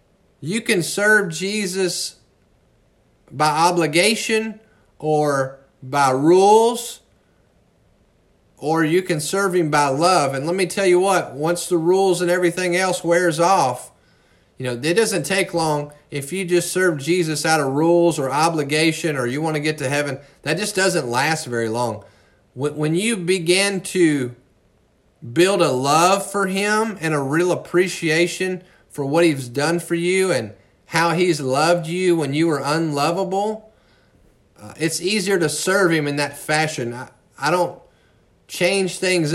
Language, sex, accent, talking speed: English, male, American, 155 wpm